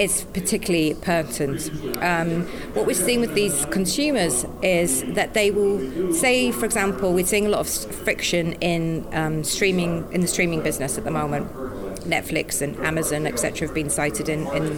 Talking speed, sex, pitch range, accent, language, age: 165 wpm, female, 160-200 Hz, British, Danish, 30-49